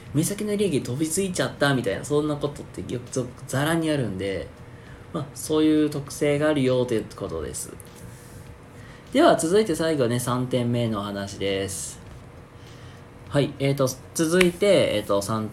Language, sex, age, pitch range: Japanese, male, 20-39, 110-155 Hz